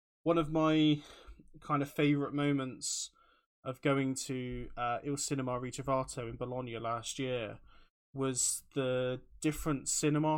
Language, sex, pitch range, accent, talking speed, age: English, male, 125-150 Hz, British, 125 wpm, 20-39